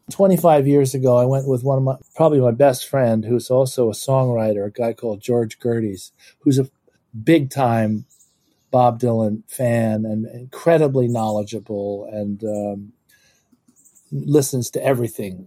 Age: 40-59